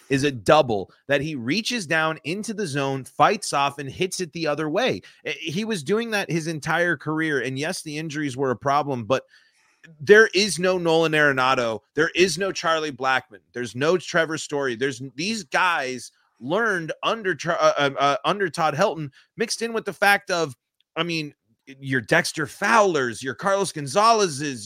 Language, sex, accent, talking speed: English, male, American, 175 wpm